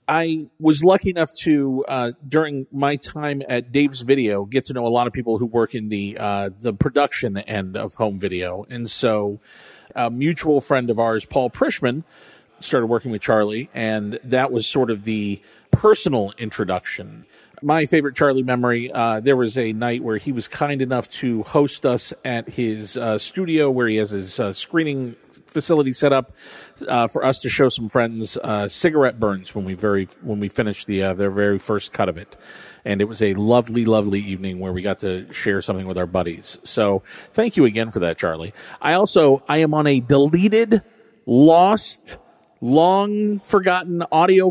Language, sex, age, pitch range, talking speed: English, male, 40-59, 105-145 Hz, 185 wpm